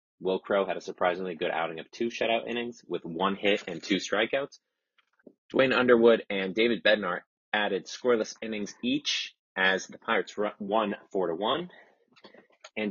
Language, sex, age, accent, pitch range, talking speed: English, male, 30-49, American, 95-120 Hz, 160 wpm